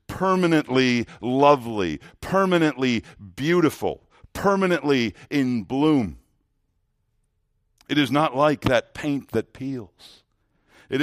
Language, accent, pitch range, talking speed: English, American, 110-140 Hz, 85 wpm